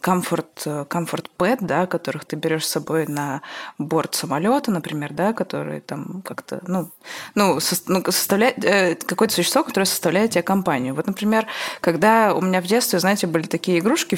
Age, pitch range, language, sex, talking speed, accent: 20-39, 160-210 Hz, Russian, female, 150 wpm, native